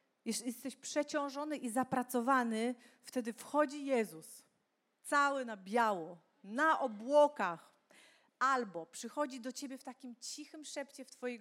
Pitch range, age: 200-260 Hz, 40-59